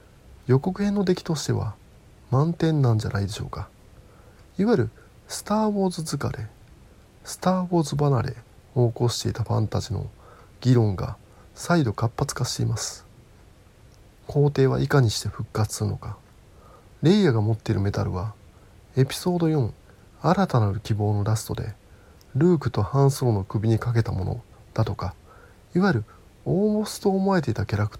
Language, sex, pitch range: Japanese, male, 105-130 Hz